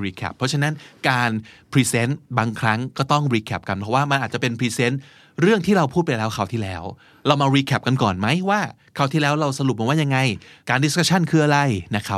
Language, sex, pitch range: Thai, male, 110-150 Hz